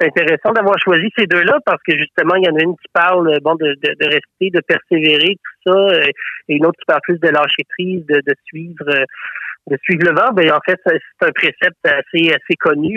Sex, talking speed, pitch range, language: male, 230 wpm, 145-170 Hz, French